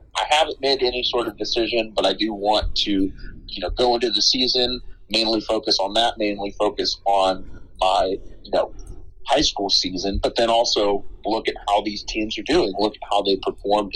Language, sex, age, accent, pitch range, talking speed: English, male, 30-49, American, 100-120 Hz, 200 wpm